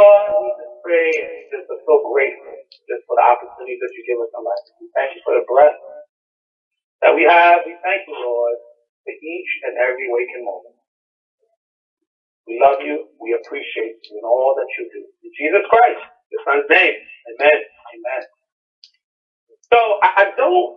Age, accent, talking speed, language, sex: 30-49, American, 160 wpm, English, male